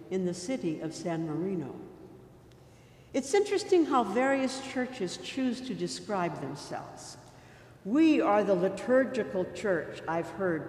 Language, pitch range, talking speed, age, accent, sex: English, 165-235 Hz, 125 wpm, 60-79, American, female